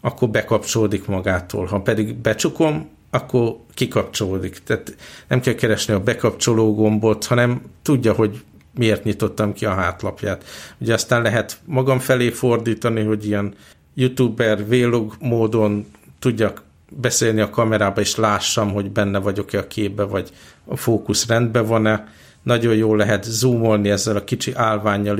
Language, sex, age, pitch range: Hungarian, male, 50-69, 105-115 Hz